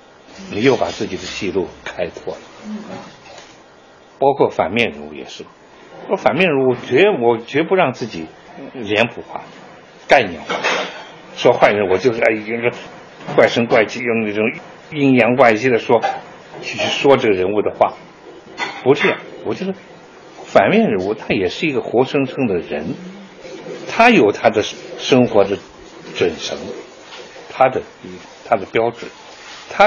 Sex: male